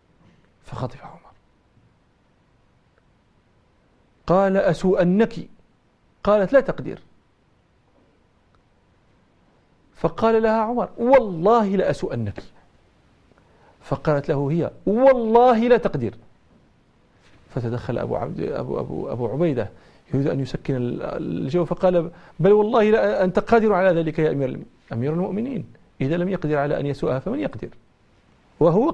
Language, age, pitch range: Arabic, 50-69, 140-210 Hz